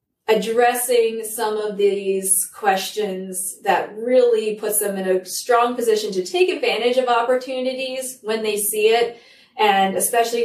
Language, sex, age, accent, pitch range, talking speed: English, female, 30-49, American, 190-225 Hz, 140 wpm